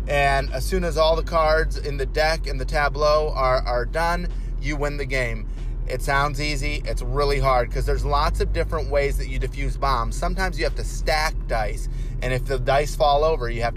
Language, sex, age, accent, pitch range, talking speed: English, male, 30-49, American, 90-140 Hz, 220 wpm